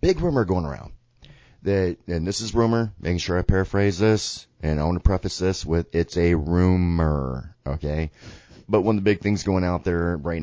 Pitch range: 80-105 Hz